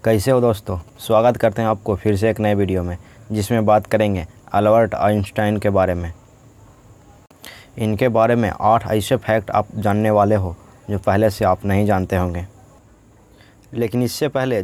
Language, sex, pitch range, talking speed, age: Hindi, male, 100-120 Hz, 170 wpm, 20-39